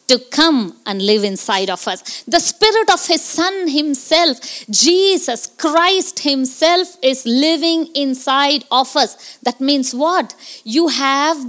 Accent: Indian